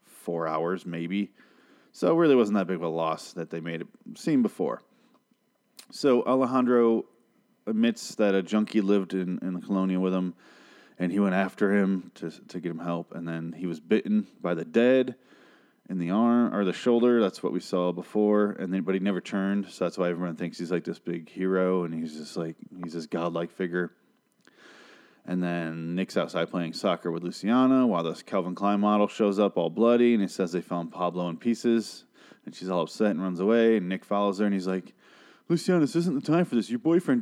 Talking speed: 215 wpm